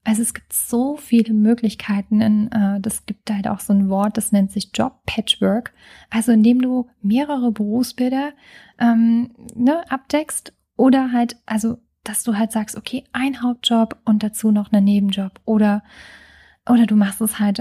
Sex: female